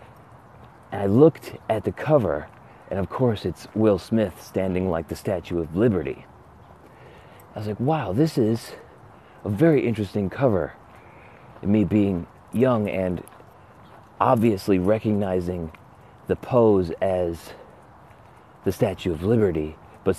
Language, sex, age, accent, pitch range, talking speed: English, male, 30-49, American, 90-115 Hz, 120 wpm